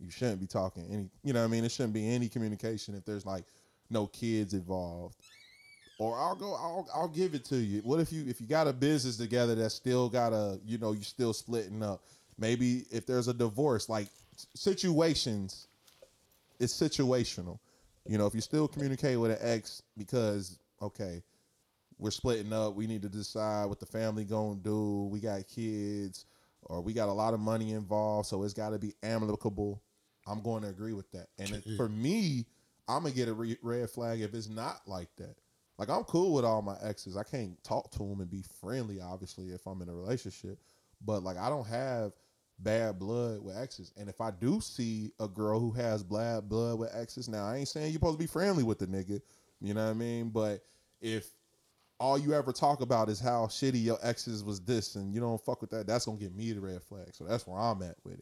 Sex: male